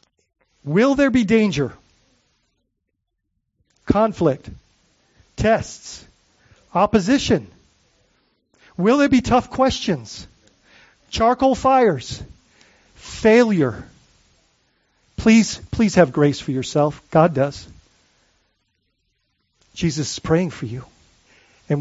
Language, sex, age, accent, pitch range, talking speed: English, male, 50-69, American, 160-245 Hz, 80 wpm